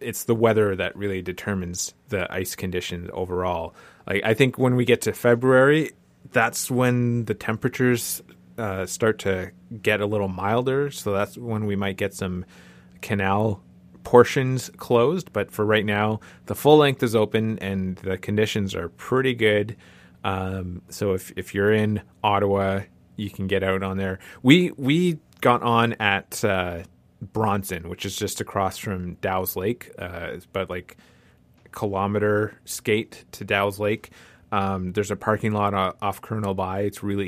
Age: 30-49